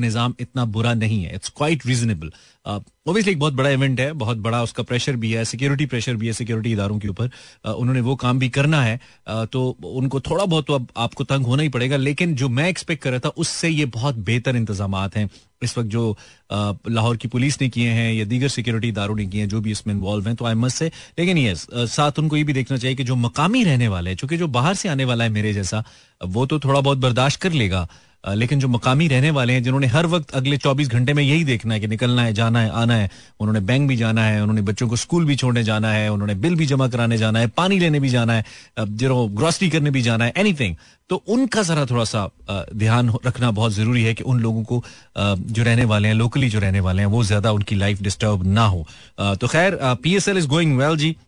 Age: 30-49